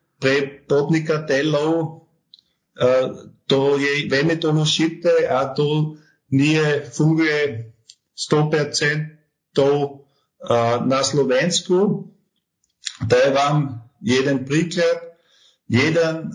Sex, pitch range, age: male, 140-165 Hz, 50-69